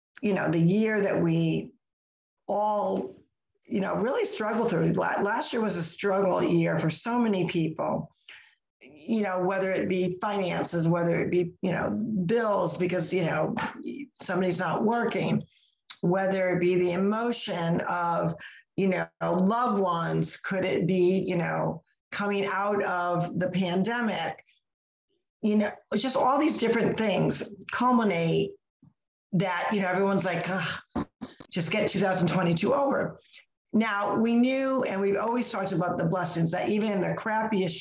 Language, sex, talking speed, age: English, female, 150 wpm, 50-69